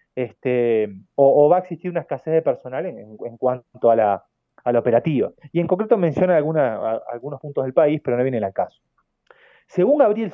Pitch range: 130-200 Hz